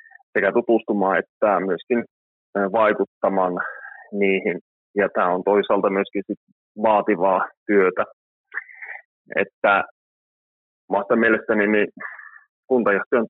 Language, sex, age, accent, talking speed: Finnish, male, 30-49, native, 85 wpm